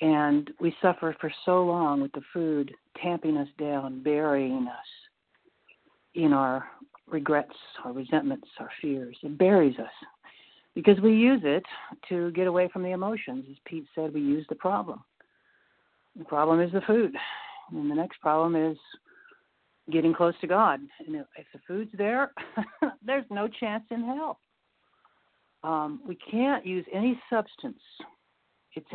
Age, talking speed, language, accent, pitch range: 60-79, 150 wpm, English, American, 160-210 Hz